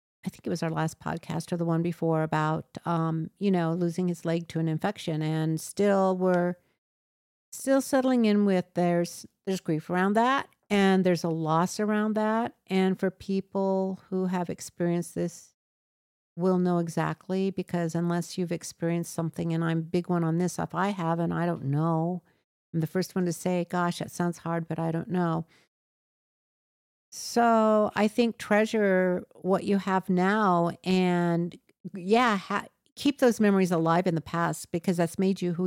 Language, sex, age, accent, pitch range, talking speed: English, female, 50-69, American, 170-190 Hz, 175 wpm